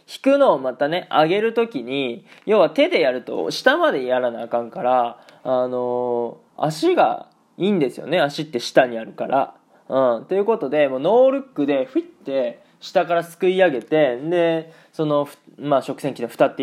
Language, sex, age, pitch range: Japanese, male, 20-39, 125-185 Hz